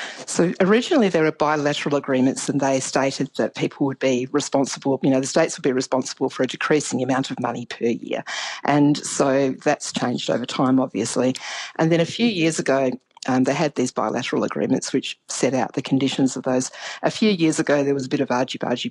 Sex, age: female, 50-69